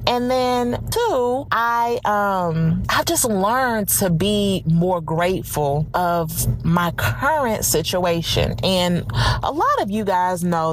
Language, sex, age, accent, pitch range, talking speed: English, female, 30-49, American, 155-210 Hz, 130 wpm